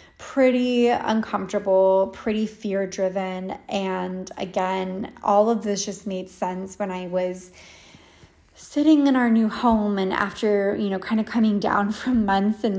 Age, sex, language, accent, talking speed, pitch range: 20-39, female, English, American, 145 wpm, 180-205 Hz